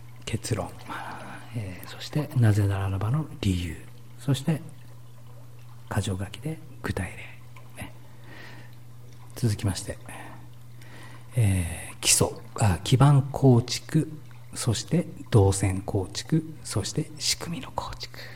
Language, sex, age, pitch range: Japanese, male, 50-69, 105-125 Hz